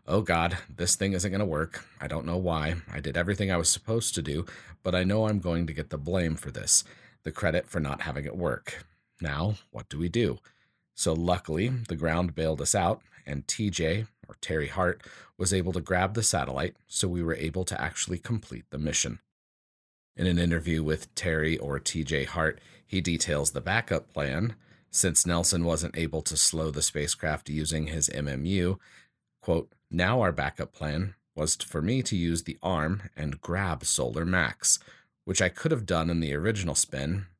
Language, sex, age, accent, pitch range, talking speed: English, male, 40-59, American, 80-95 Hz, 190 wpm